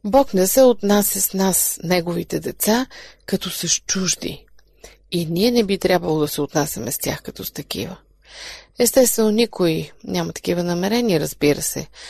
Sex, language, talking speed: female, Bulgarian, 160 wpm